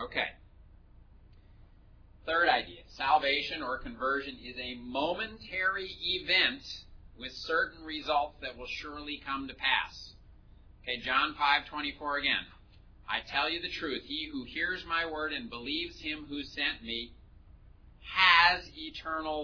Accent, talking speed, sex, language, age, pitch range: American, 135 wpm, male, English, 40-59, 95-155 Hz